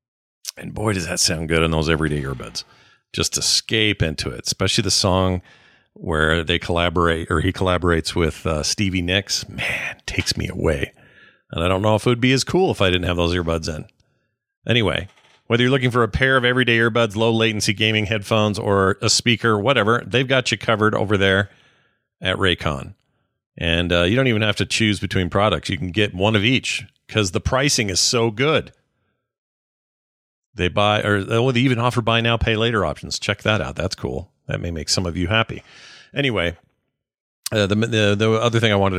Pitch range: 90-115 Hz